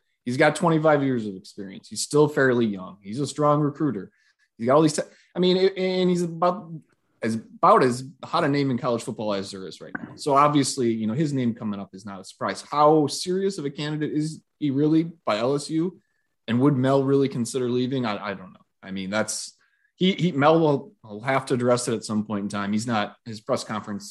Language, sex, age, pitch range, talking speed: English, male, 20-39, 105-145 Hz, 230 wpm